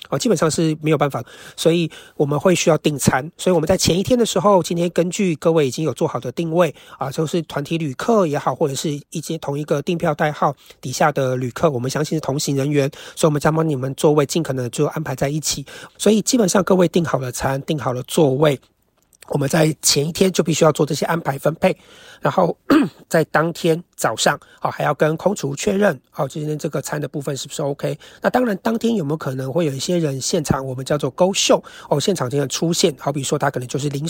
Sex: male